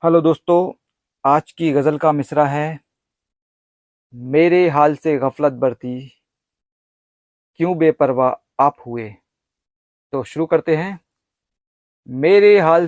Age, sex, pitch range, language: 40-59, male, 130-175 Hz, Hindi